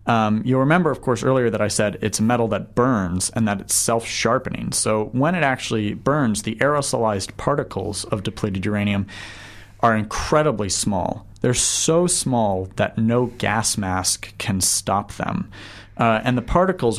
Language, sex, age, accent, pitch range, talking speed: English, male, 30-49, American, 100-120 Hz, 165 wpm